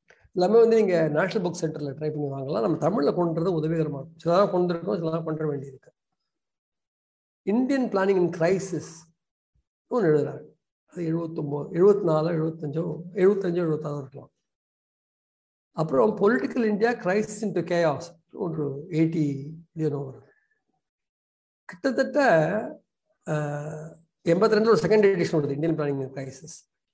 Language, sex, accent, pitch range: Tamil, male, native, 155-205 Hz